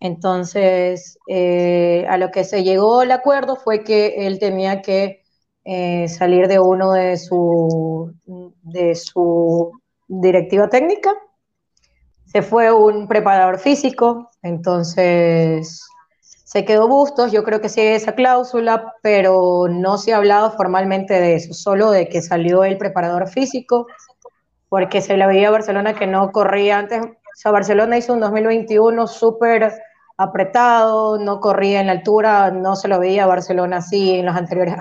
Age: 20-39